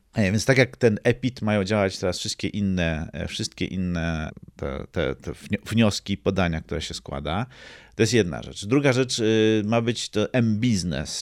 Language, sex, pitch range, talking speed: Polish, male, 90-110 Hz, 140 wpm